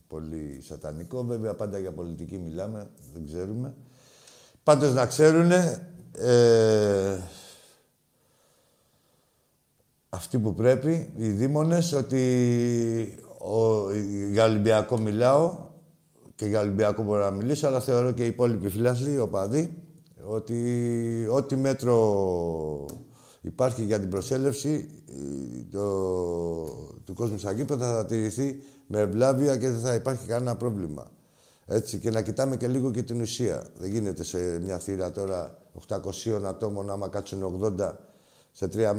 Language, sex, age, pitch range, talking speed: Greek, male, 60-79, 100-130 Hz, 125 wpm